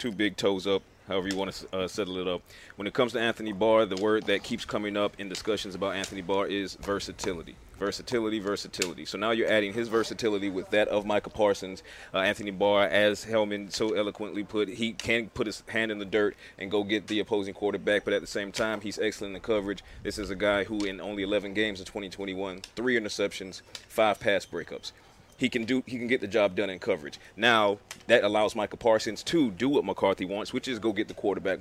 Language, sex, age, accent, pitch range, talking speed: English, male, 30-49, American, 100-115 Hz, 225 wpm